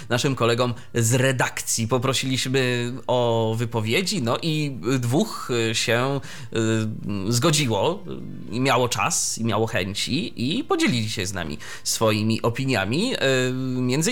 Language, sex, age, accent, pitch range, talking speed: Polish, male, 30-49, native, 115-155 Hz, 100 wpm